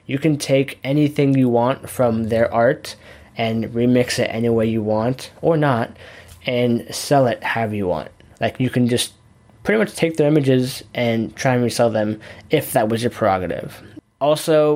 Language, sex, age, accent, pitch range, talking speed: English, male, 10-29, American, 105-130 Hz, 180 wpm